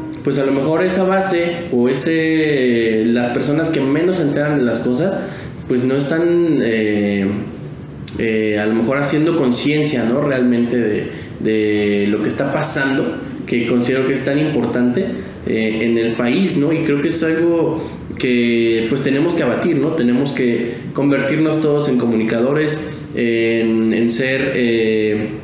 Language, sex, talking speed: Spanish, male, 160 wpm